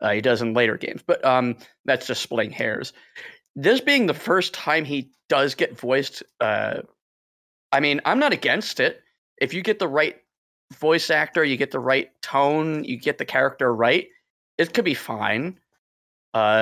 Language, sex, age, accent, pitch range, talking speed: English, male, 30-49, American, 130-215 Hz, 180 wpm